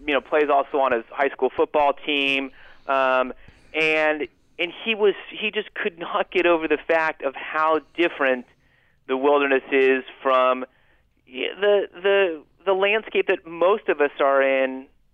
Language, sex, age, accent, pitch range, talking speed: English, male, 30-49, American, 125-155 Hz, 160 wpm